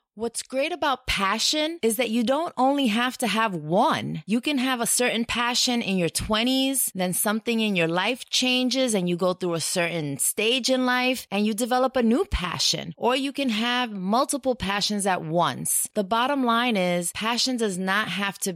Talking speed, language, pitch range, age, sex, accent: 195 wpm, English, 180-240 Hz, 30-49, female, American